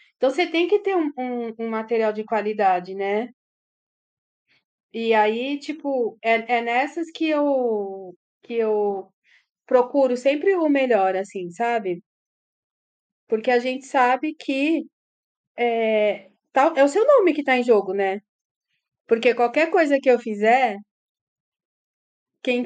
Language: Portuguese